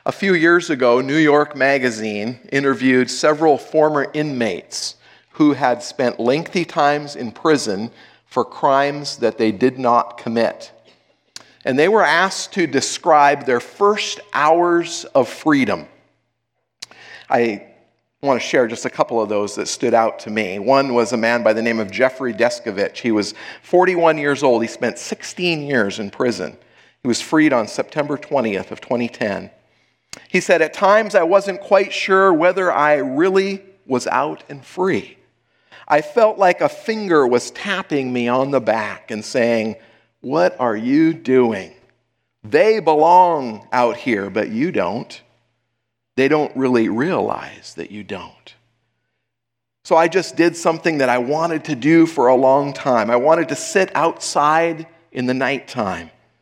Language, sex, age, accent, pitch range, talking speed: English, male, 50-69, American, 120-165 Hz, 155 wpm